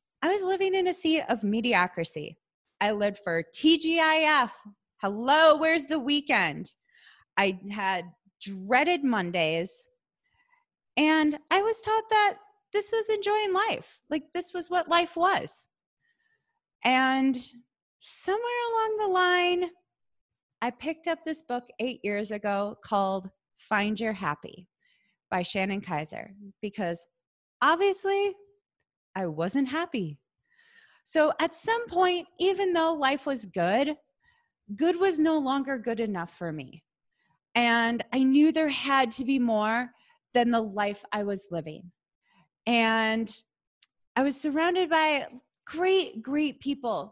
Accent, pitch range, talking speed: American, 210-340 Hz, 125 wpm